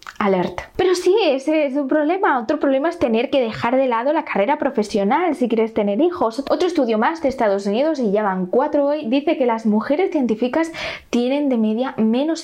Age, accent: 20-39, Spanish